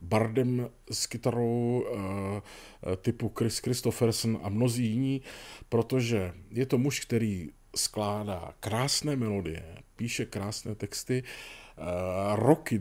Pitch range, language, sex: 100-120 Hz, Czech, male